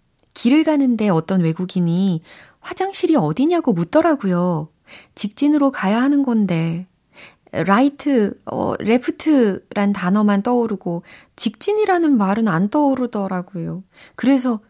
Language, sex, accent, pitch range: Korean, female, native, 165-245 Hz